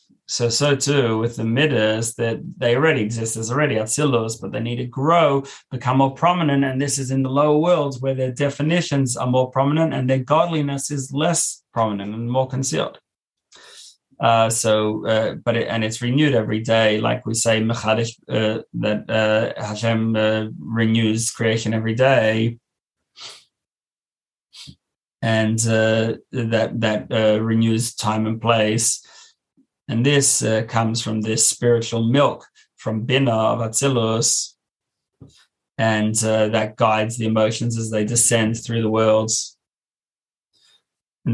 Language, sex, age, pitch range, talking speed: English, male, 20-39, 110-130 Hz, 145 wpm